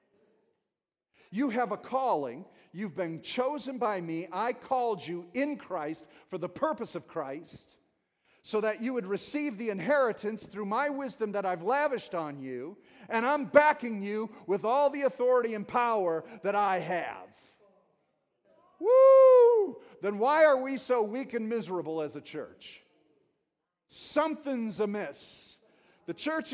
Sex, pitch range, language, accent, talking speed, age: male, 180-255 Hz, English, American, 140 wpm, 50-69